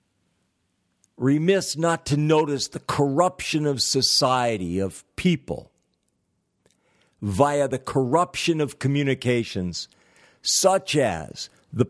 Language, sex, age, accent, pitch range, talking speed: English, male, 50-69, American, 110-150 Hz, 90 wpm